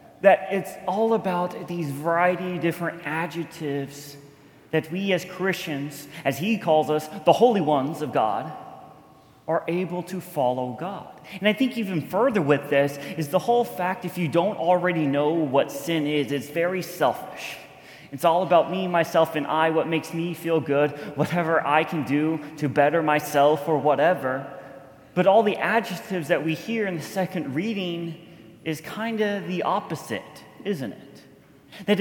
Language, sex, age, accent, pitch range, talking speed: English, male, 30-49, American, 150-185 Hz, 165 wpm